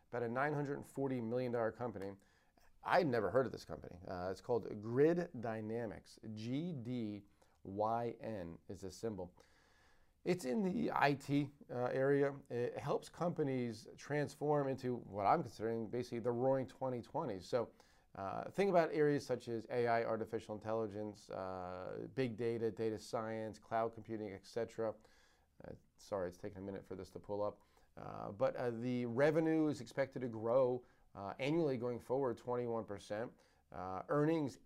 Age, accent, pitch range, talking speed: 40-59, American, 110-130 Hz, 155 wpm